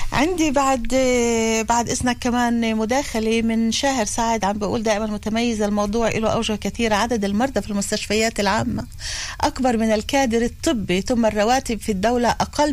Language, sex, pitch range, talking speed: Hebrew, female, 200-240 Hz, 145 wpm